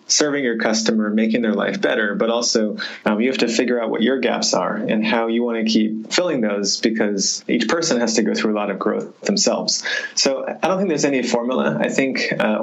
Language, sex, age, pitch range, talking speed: English, male, 20-39, 110-120 Hz, 235 wpm